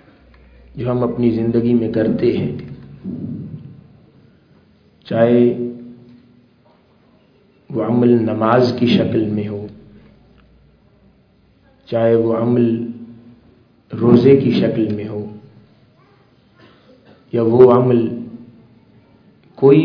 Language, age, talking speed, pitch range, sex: Urdu, 40-59, 80 wpm, 110-125 Hz, male